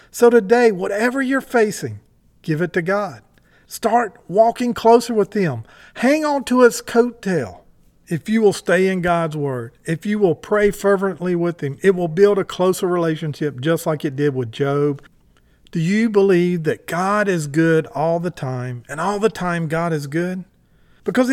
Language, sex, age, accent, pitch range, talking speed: English, male, 40-59, American, 160-210 Hz, 175 wpm